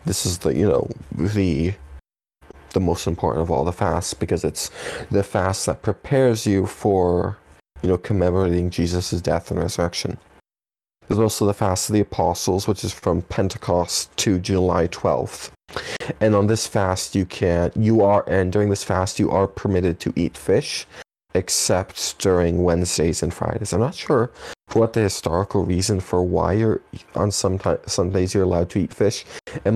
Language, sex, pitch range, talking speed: English, male, 85-100 Hz, 175 wpm